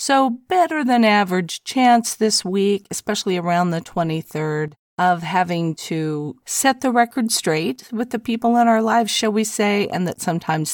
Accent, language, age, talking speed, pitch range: American, English, 50-69, 170 wpm, 165-220 Hz